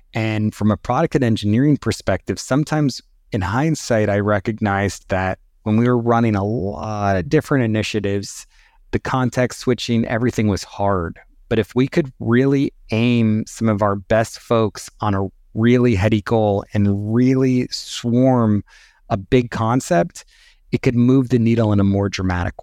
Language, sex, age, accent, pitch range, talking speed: English, male, 30-49, American, 100-120 Hz, 155 wpm